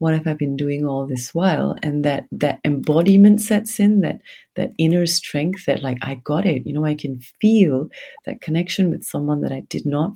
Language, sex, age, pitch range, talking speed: English, female, 40-59, 135-175 Hz, 215 wpm